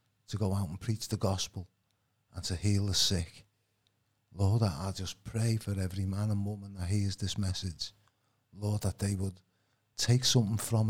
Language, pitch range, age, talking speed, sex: English, 95-110 Hz, 50-69, 180 wpm, male